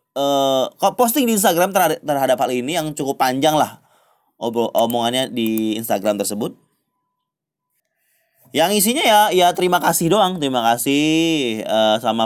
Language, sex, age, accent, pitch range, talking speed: Indonesian, male, 20-39, native, 135-190 Hz, 135 wpm